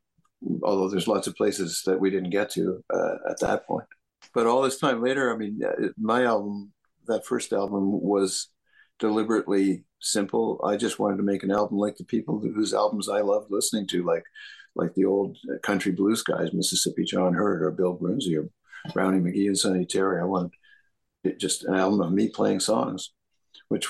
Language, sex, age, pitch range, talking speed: English, male, 50-69, 90-100 Hz, 190 wpm